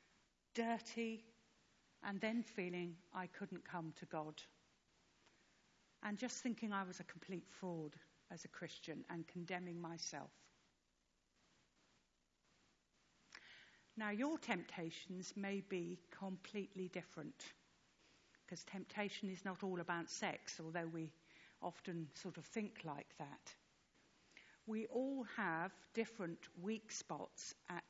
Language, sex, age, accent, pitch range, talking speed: English, female, 50-69, British, 165-205 Hz, 110 wpm